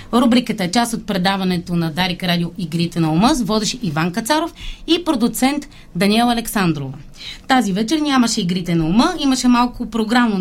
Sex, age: female, 30-49